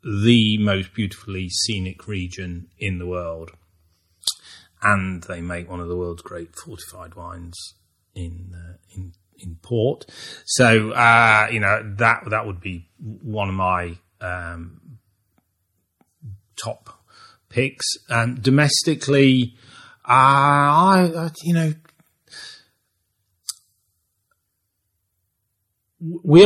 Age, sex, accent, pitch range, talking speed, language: 30-49, male, British, 90-110 Hz, 105 wpm, English